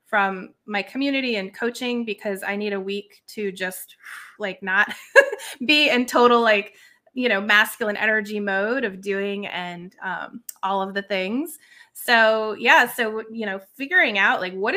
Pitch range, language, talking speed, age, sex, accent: 195-245 Hz, English, 165 wpm, 20-39, female, American